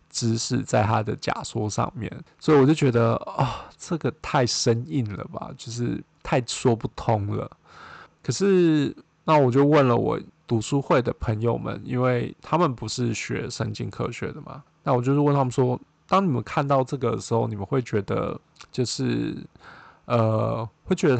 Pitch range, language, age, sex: 115-145 Hz, Chinese, 20-39, male